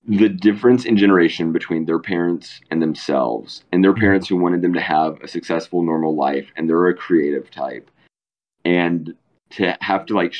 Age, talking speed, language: 30-49, 180 wpm, English